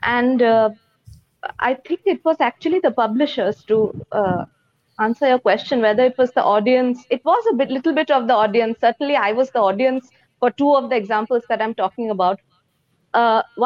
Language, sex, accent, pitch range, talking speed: English, female, Indian, 215-275 Hz, 190 wpm